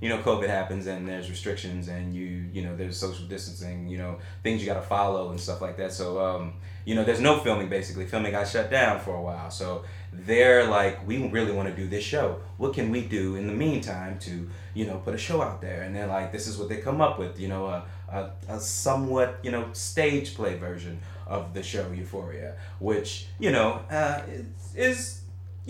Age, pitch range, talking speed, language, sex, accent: 30-49, 95-110 Hz, 225 wpm, English, male, American